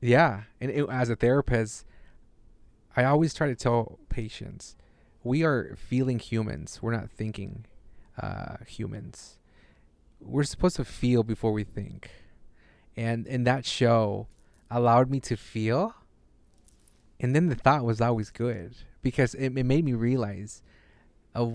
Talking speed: 135 wpm